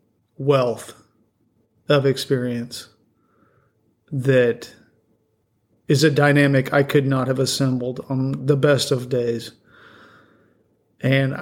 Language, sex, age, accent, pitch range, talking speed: English, male, 40-59, American, 115-145 Hz, 95 wpm